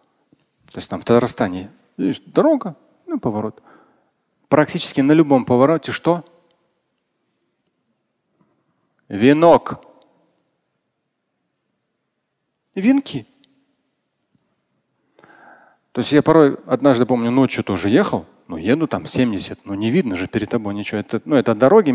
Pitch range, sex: 120-170 Hz, male